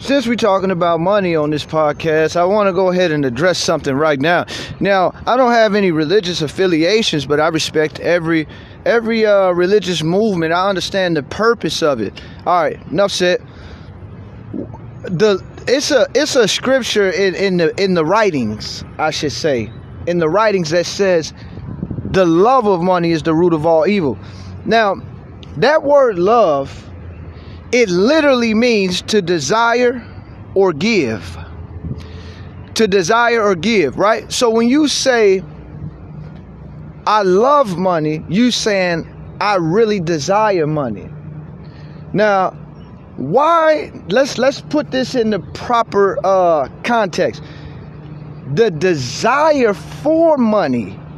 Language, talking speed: English, 135 wpm